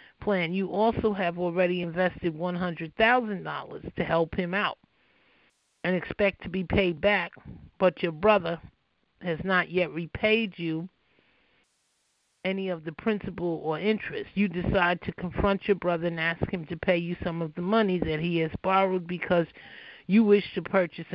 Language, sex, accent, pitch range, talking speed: English, male, American, 170-200 Hz, 160 wpm